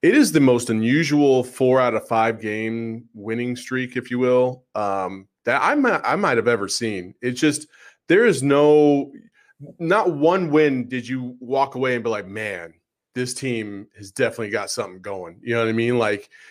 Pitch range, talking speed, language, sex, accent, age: 115-140 Hz, 195 wpm, English, male, American, 20-39